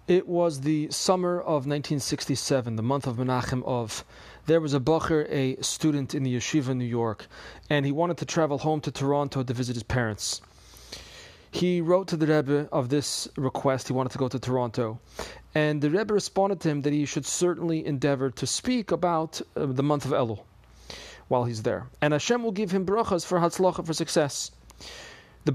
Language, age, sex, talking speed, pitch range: English, 30-49, male, 190 wpm, 130-165 Hz